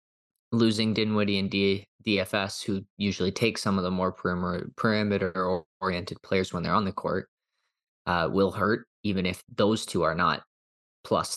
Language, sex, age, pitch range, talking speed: English, male, 20-39, 90-110 Hz, 150 wpm